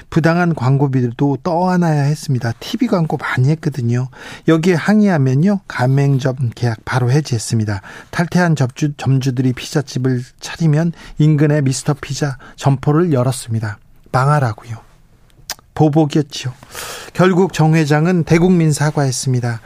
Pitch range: 125-155 Hz